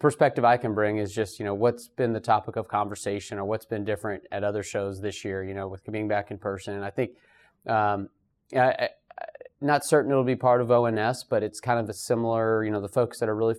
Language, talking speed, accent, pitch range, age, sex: English, 245 wpm, American, 105-120 Hz, 20-39, male